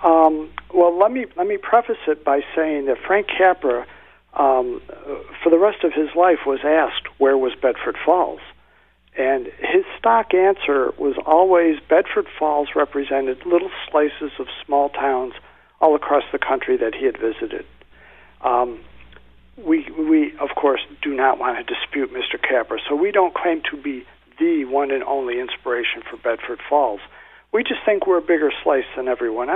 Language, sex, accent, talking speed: English, male, American, 170 wpm